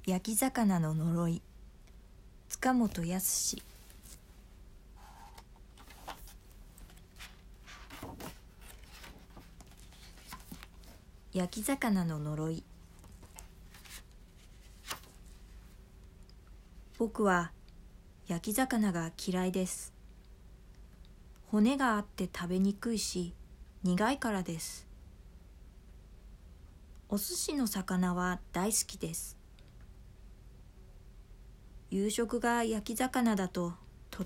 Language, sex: Japanese, female